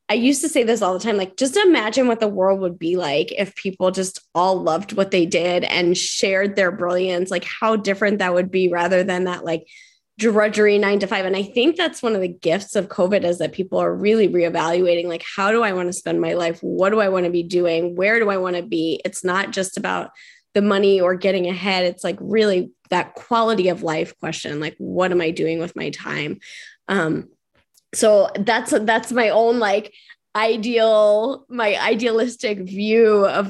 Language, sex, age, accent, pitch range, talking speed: English, female, 20-39, American, 180-225 Hz, 210 wpm